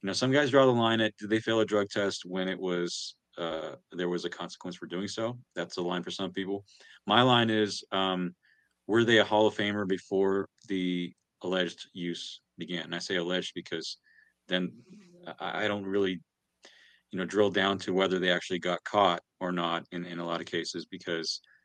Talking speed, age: 210 wpm, 30-49